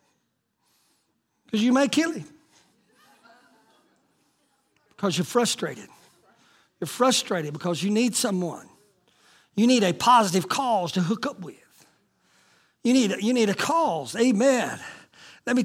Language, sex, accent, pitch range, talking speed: English, male, American, 190-260 Hz, 120 wpm